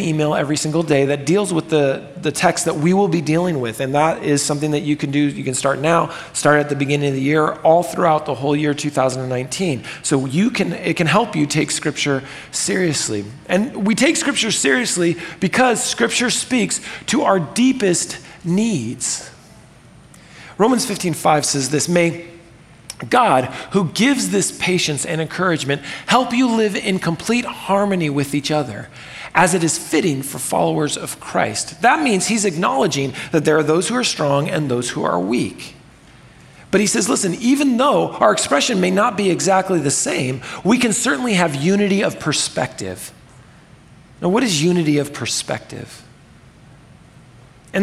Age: 40-59